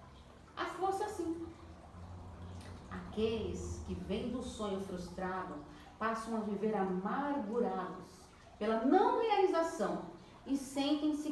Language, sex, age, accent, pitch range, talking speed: Portuguese, female, 40-59, Brazilian, 195-280 Hz, 95 wpm